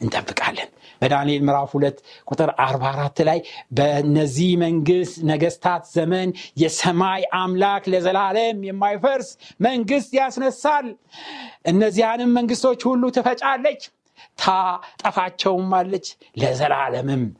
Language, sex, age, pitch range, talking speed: Amharic, male, 60-79, 170-230 Hz, 85 wpm